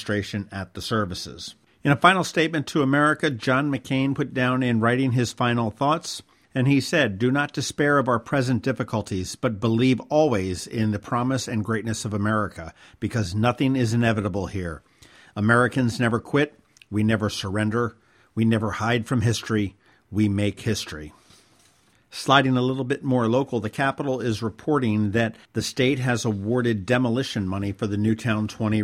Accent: American